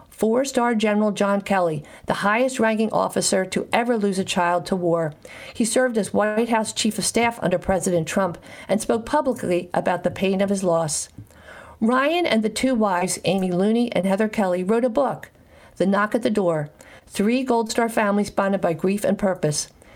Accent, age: American, 50-69